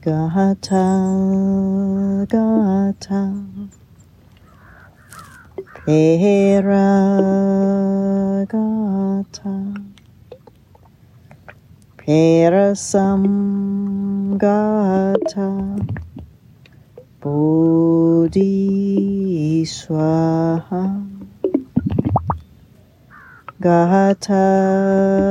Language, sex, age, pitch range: English, female, 30-49, 165-200 Hz